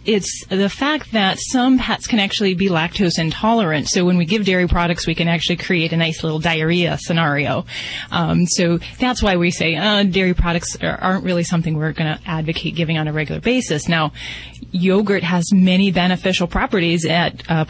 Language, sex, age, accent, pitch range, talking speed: English, female, 30-49, American, 165-215 Hz, 185 wpm